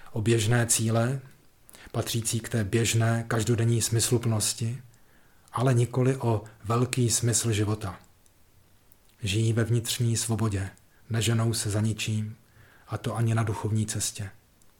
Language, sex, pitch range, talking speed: Czech, male, 105-120 Hz, 120 wpm